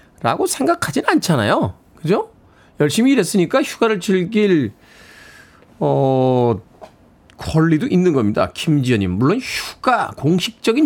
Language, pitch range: Korean, 130-180 Hz